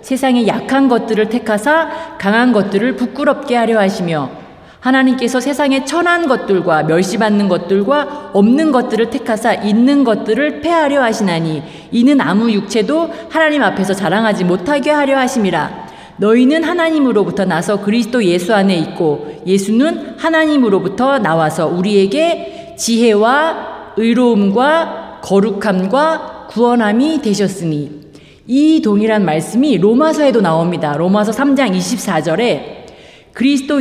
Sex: female